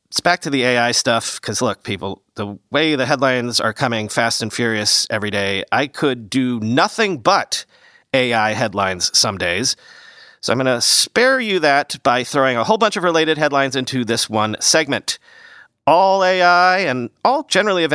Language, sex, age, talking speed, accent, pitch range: English, male, 40-59, 180 wpm, American, 125-180 Hz